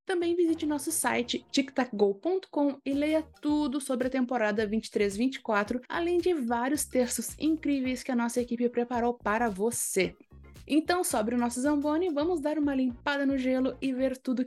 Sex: female